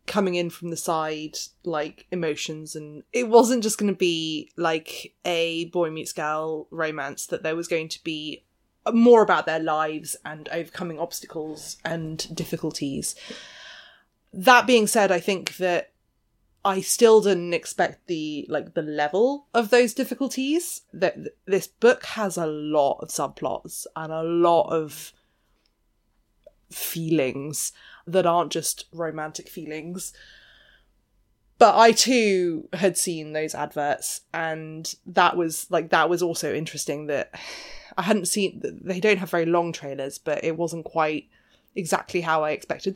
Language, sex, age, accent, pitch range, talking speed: English, female, 20-39, British, 155-195 Hz, 145 wpm